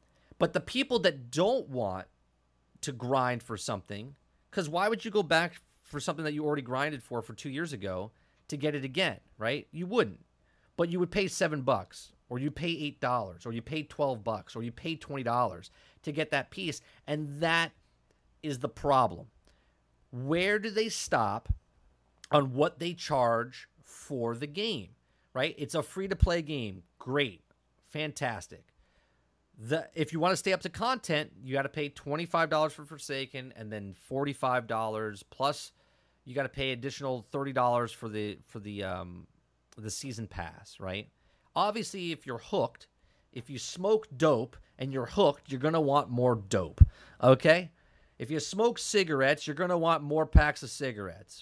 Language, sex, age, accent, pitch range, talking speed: English, male, 30-49, American, 110-155 Hz, 175 wpm